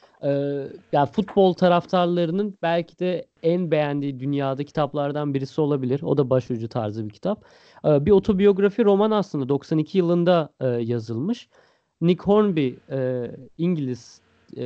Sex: male